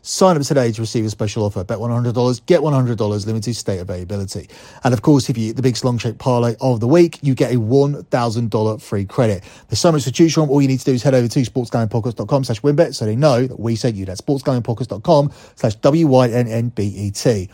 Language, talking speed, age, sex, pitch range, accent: English, 215 wpm, 30-49, male, 115-150 Hz, British